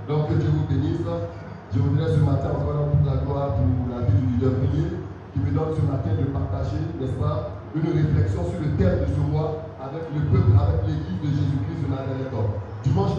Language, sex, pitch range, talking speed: French, male, 95-145 Hz, 205 wpm